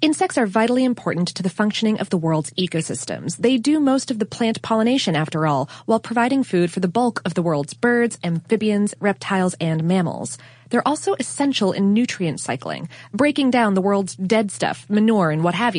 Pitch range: 175-240 Hz